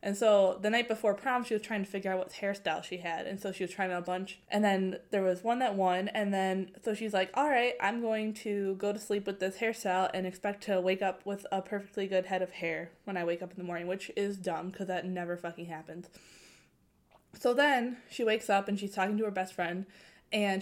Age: 20-39